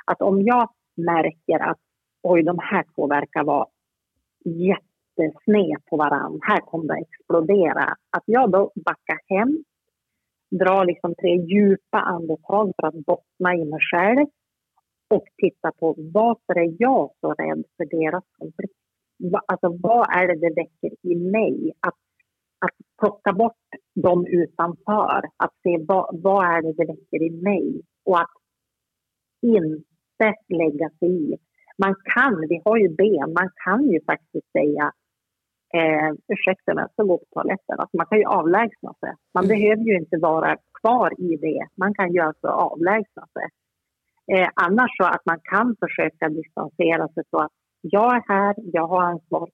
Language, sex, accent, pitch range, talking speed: Swedish, female, native, 165-205 Hz, 155 wpm